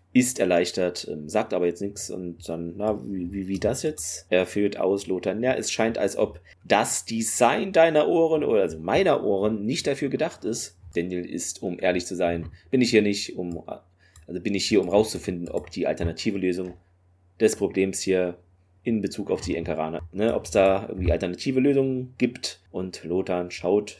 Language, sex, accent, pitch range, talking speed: German, male, German, 90-110 Hz, 190 wpm